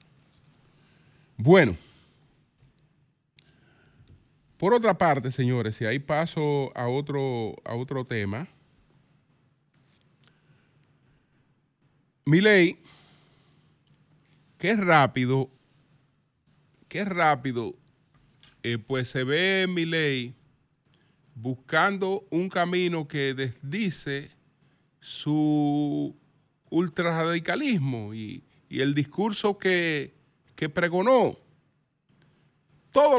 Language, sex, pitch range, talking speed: Spanish, male, 140-180 Hz, 70 wpm